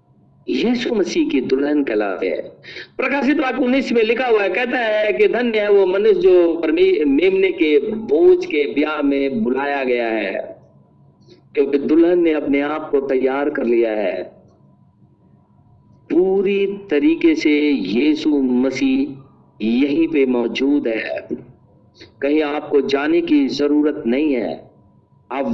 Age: 50-69